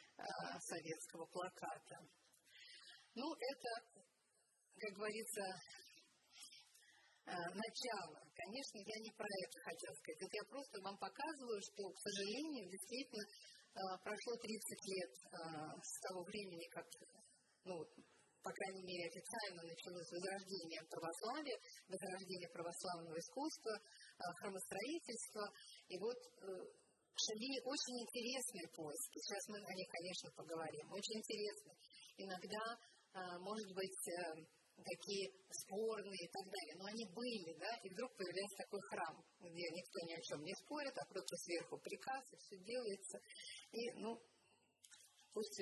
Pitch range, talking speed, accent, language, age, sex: 180-230 Hz, 120 wpm, native, Russian, 30-49, female